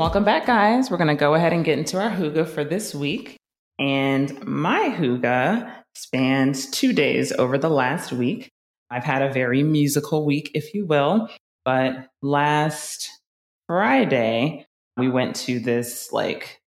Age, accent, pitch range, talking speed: 20-39, American, 130-170 Hz, 155 wpm